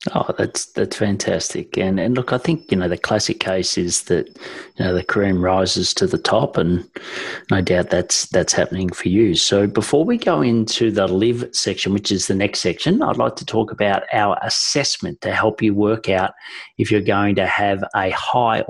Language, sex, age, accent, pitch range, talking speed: English, male, 30-49, Australian, 95-115 Hz, 205 wpm